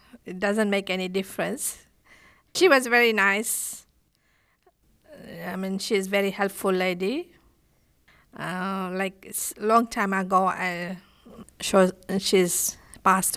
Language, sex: English, female